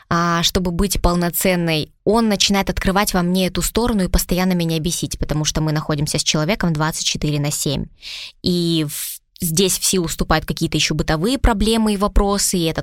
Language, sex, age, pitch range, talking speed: Russian, female, 20-39, 160-200 Hz, 170 wpm